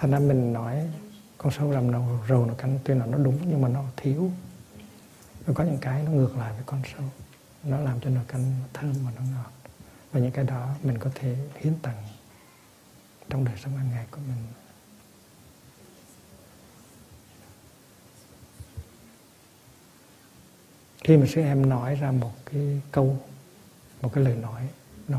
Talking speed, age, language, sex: 165 wpm, 60-79, Vietnamese, male